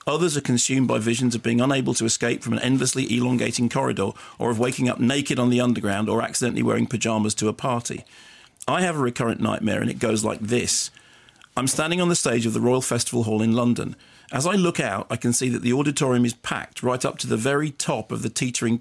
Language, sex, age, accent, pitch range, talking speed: English, male, 40-59, British, 115-135 Hz, 235 wpm